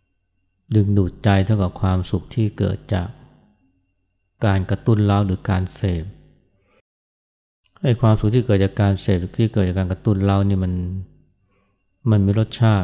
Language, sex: Thai, male